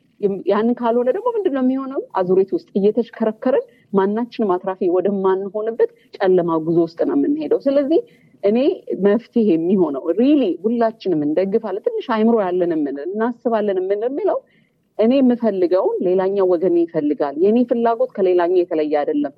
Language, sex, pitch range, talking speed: Amharic, female, 200-305 Hz, 120 wpm